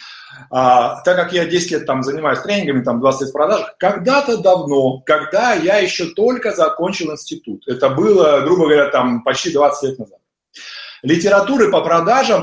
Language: Russian